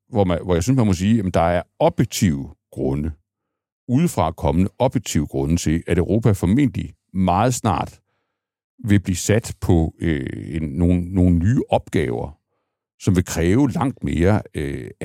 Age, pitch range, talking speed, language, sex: 60-79, 85-110 Hz, 155 wpm, Danish, male